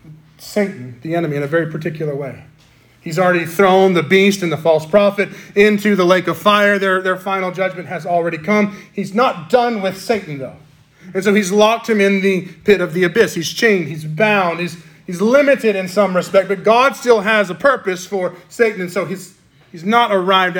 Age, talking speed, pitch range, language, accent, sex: 30-49, 205 wpm, 155-195 Hz, English, American, male